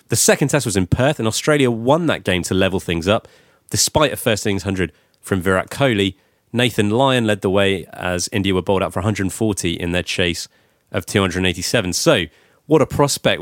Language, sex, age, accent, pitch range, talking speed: English, male, 30-49, British, 95-120 Hz, 195 wpm